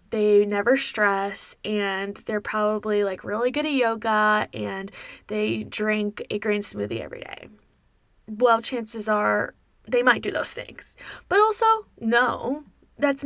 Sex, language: female, English